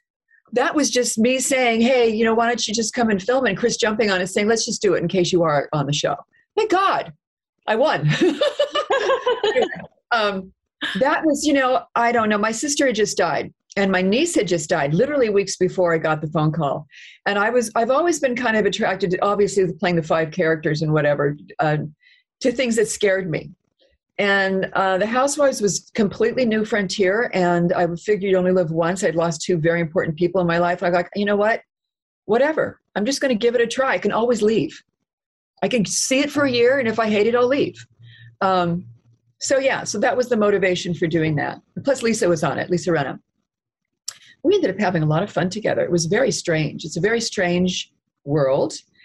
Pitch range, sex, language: 175-245 Hz, female, English